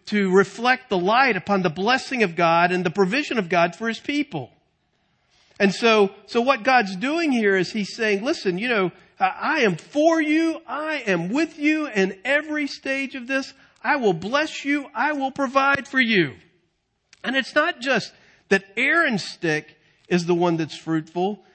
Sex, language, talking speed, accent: male, English, 180 wpm, American